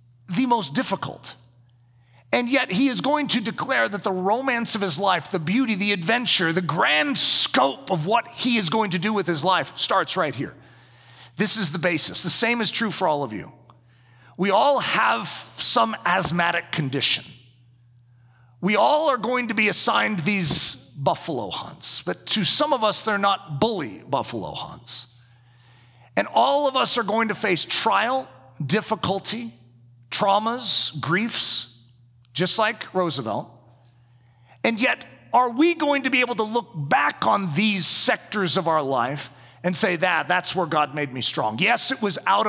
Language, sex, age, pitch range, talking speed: English, male, 40-59, 125-215 Hz, 170 wpm